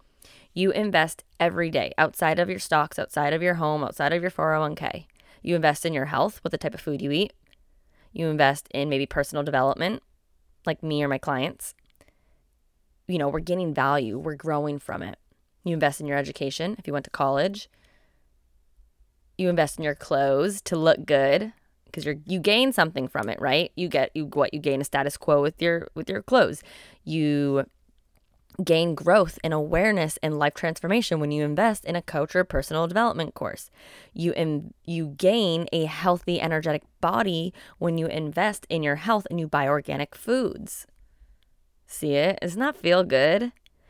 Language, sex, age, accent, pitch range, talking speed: English, female, 20-39, American, 145-180 Hz, 185 wpm